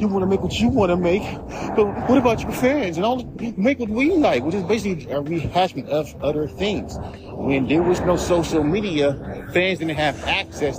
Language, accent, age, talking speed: English, American, 40-59, 210 wpm